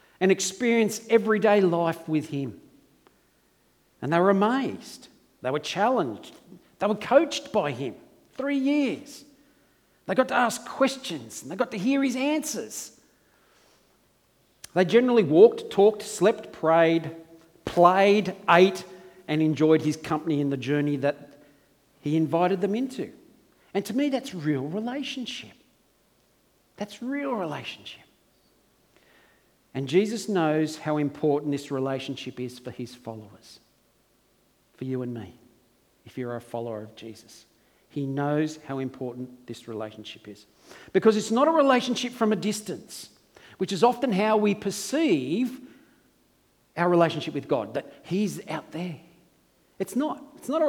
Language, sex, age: English, male, 50-69